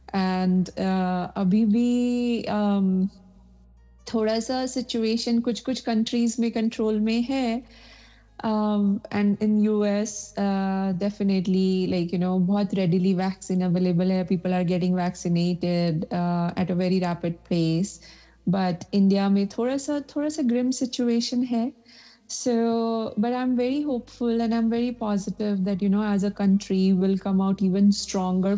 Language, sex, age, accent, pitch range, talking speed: English, female, 30-49, Indian, 185-225 Hz, 135 wpm